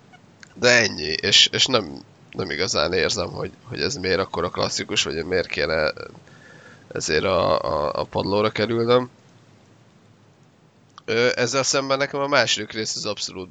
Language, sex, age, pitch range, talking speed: Hungarian, male, 20-39, 100-120 Hz, 140 wpm